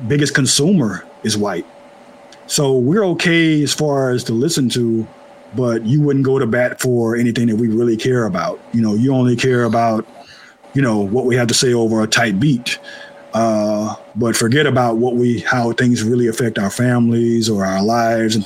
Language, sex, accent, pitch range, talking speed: English, male, American, 115-140 Hz, 190 wpm